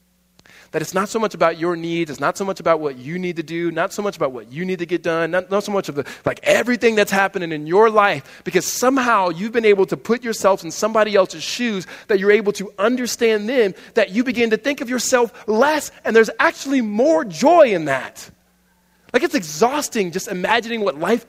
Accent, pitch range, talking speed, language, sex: American, 165-215 Hz, 230 wpm, English, male